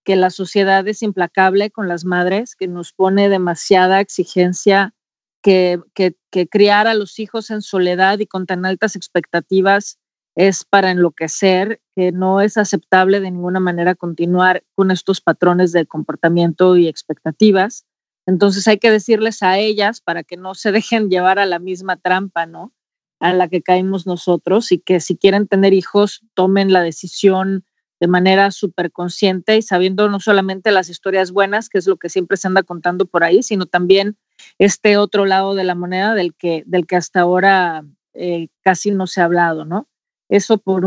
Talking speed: 175 wpm